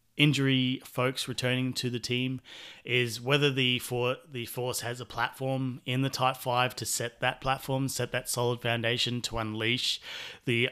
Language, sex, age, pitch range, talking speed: English, male, 30-49, 115-130 Hz, 170 wpm